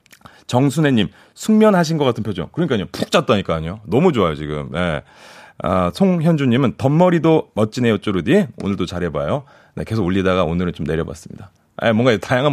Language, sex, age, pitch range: Korean, male, 30-49, 100-165 Hz